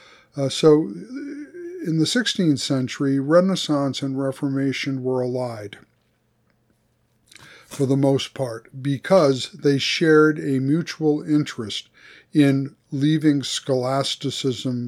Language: English